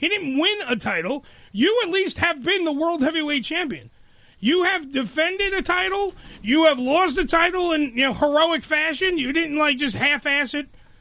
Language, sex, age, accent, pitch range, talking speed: English, male, 30-49, American, 265-360 Hz, 190 wpm